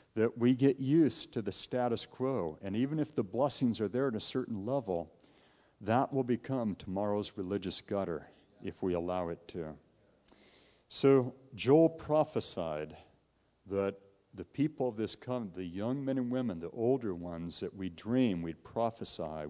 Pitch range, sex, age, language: 95-120 Hz, male, 50-69, English